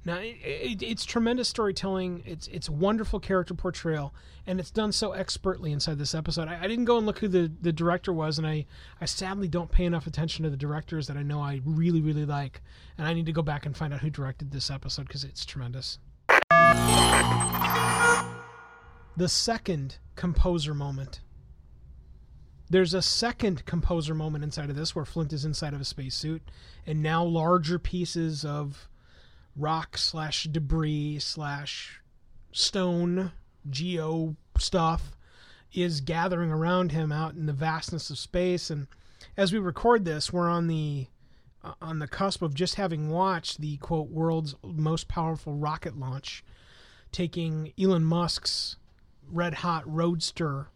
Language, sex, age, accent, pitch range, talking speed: English, male, 30-49, American, 145-175 Hz, 150 wpm